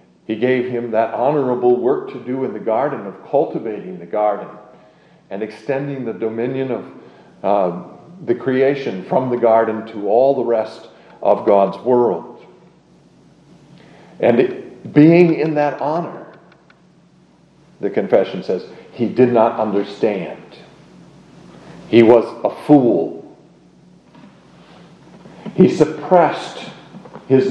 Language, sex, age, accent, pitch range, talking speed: English, male, 50-69, American, 110-140 Hz, 115 wpm